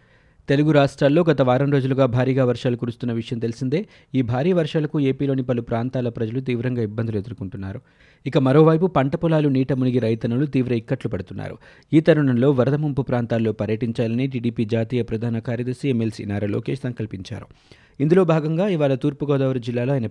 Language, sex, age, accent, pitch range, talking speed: Telugu, male, 30-49, native, 115-140 Hz, 150 wpm